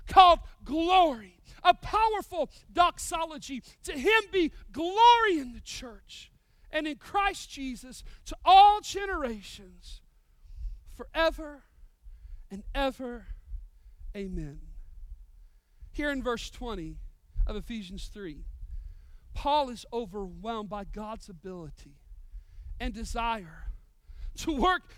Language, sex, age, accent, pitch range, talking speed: English, male, 40-59, American, 210-325 Hz, 95 wpm